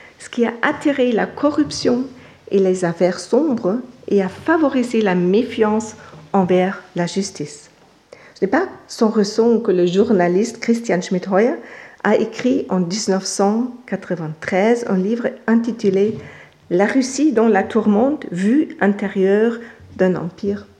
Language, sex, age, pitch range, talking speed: French, female, 50-69, 185-240 Hz, 130 wpm